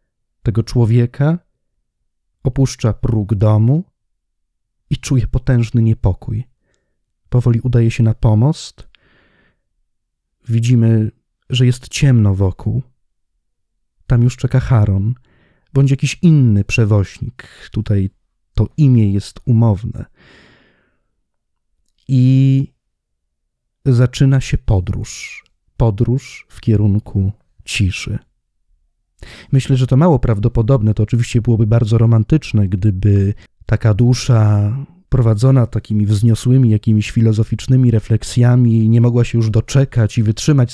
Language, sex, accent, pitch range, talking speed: Polish, male, native, 105-130 Hz, 95 wpm